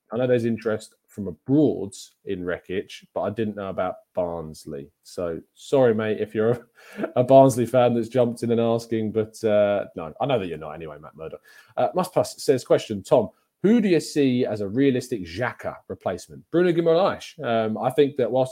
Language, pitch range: English, 105-130 Hz